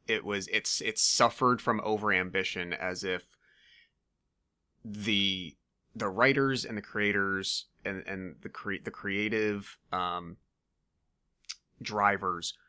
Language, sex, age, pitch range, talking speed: English, male, 30-49, 95-110 Hz, 110 wpm